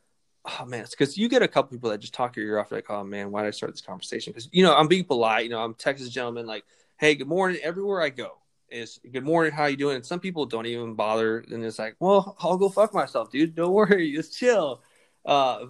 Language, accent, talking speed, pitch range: English, American, 265 wpm, 115-155 Hz